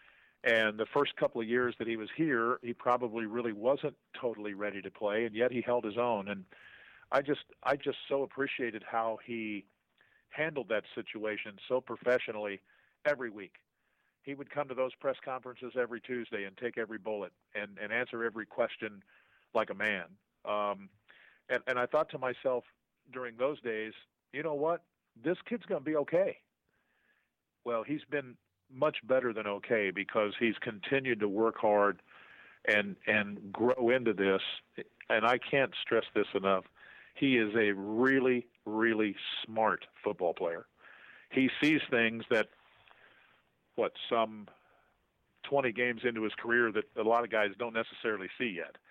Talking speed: 160 wpm